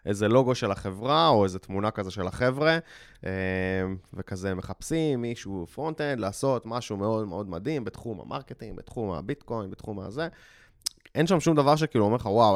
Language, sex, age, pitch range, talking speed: Hebrew, male, 20-39, 95-120 Hz, 160 wpm